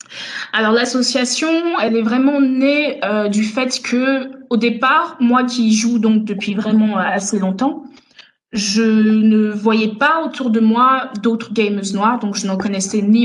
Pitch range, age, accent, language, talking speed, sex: 215-255 Hz, 20-39, French, French, 160 wpm, female